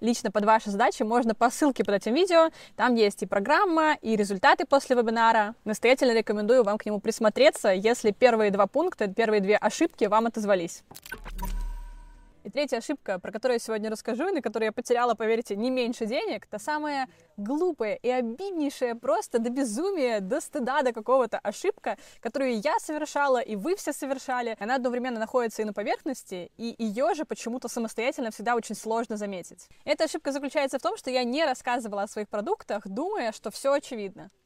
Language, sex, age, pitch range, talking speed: Russian, female, 20-39, 215-275 Hz, 175 wpm